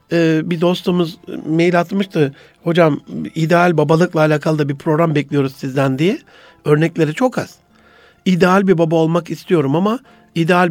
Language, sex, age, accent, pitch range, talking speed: Turkish, male, 60-79, native, 155-200 Hz, 135 wpm